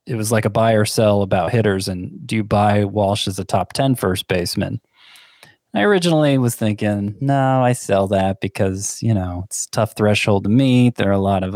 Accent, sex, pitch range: American, male, 100-135 Hz